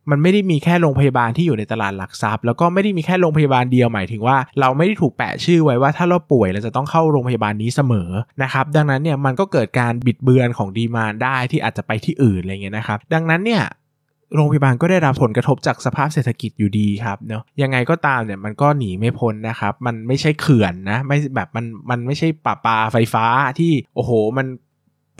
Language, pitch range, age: Thai, 115-145 Hz, 20-39